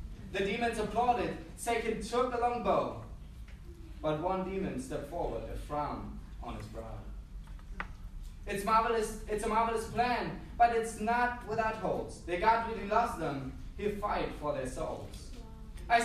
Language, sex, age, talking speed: English, male, 20-39, 150 wpm